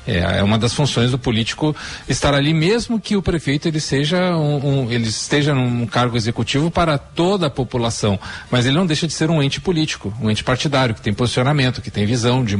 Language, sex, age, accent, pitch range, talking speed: Portuguese, male, 40-59, Brazilian, 125-165 Hz, 215 wpm